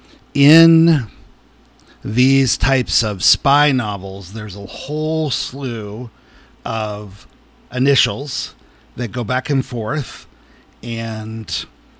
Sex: male